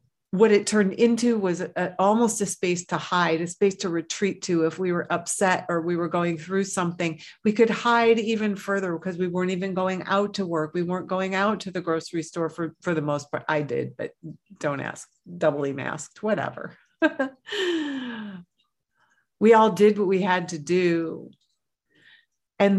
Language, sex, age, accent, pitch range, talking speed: English, female, 50-69, American, 170-220 Hz, 180 wpm